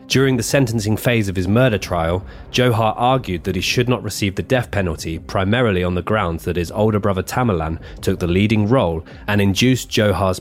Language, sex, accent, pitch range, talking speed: English, male, British, 90-115 Hz, 195 wpm